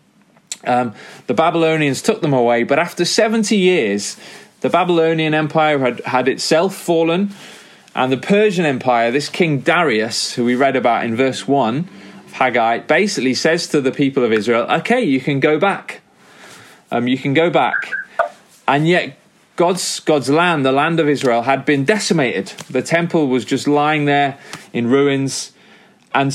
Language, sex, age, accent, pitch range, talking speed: English, male, 30-49, British, 130-175 Hz, 160 wpm